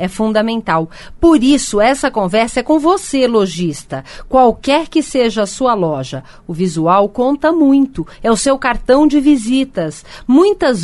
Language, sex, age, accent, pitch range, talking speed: Portuguese, female, 40-59, Brazilian, 180-265 Hz, 150 wpm